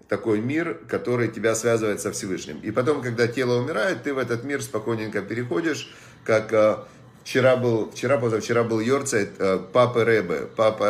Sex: male